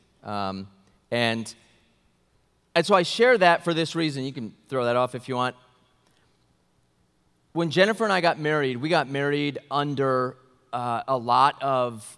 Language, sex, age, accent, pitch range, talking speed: English, male, 30-49, American, 115-185 Hz, 160 wpm